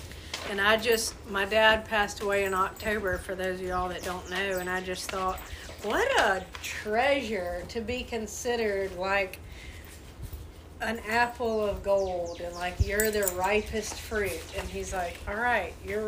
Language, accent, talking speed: English, American, 160 wpm